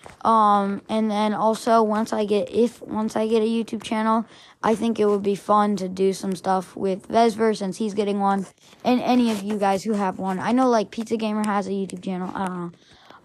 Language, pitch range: English, 205-245 Hz